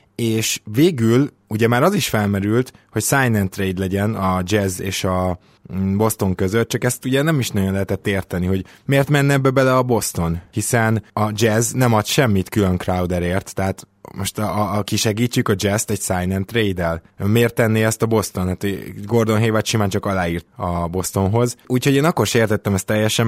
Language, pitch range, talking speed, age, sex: Hungarian, 95-115 Hz, 190 wpm, 20-39, male